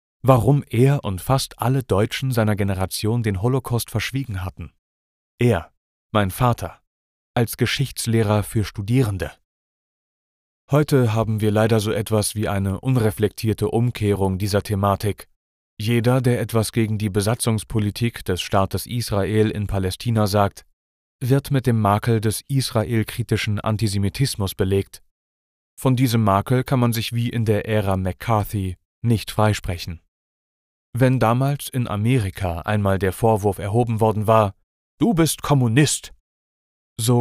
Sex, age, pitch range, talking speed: male, 30-49, 95-115 Hz, 125 wpm